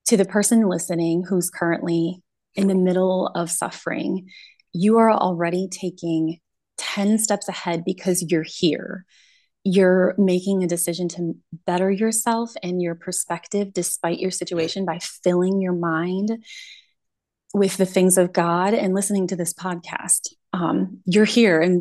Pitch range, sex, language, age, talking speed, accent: 170-200 Hz, female, English, 20-39, 145 wpm, American